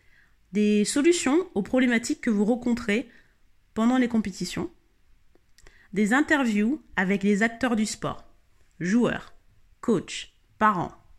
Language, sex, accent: French, female, French